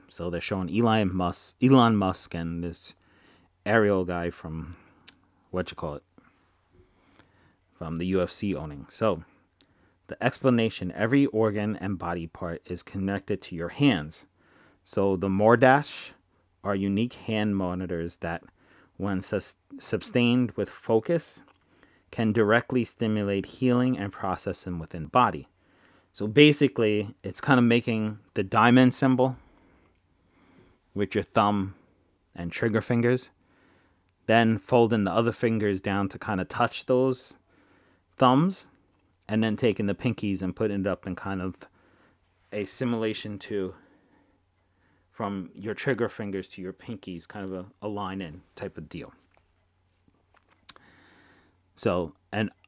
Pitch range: 90-115 Hz